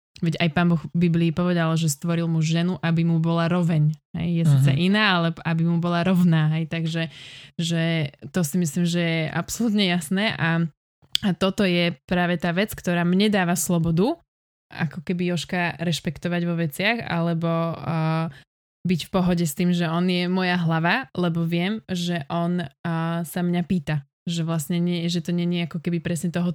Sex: male